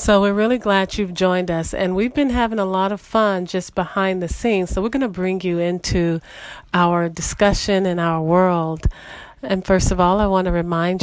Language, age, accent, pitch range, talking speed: English, 40-59, American, 175-205 Hz, 210 wpm